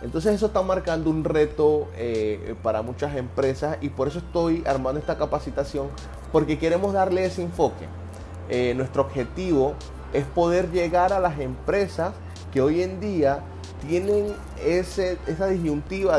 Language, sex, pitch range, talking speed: Spanish, male, 95-155 Hz, 140 wpm